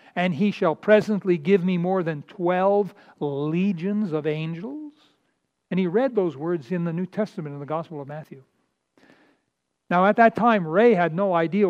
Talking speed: 175 wpm